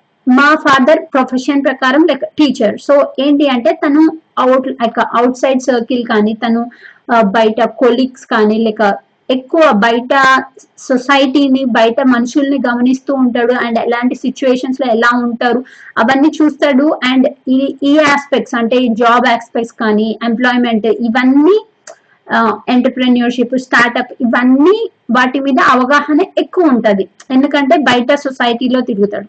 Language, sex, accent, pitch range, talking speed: Telugu, female, native, 245-290 Hz, 120 wpm